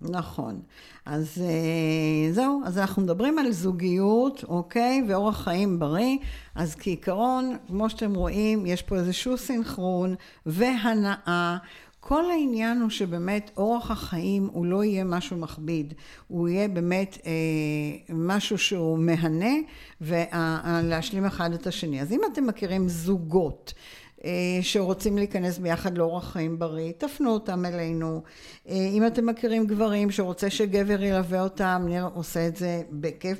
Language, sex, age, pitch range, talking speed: Hebrew, female, 60-79, 175-215 Hz, 125 wpm